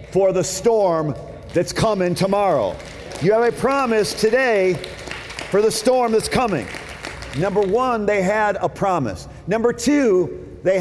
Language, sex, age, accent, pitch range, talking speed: English, male, 50-69, American, 140-210 Hz, 140 wpm